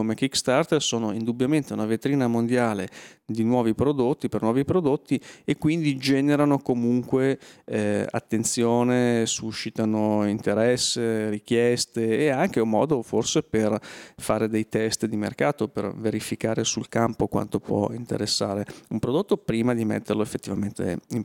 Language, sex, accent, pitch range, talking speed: Italian, male, native, 110-130 Hz, 135 wpm